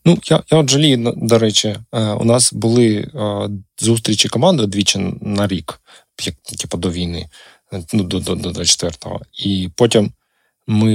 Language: Ukrainian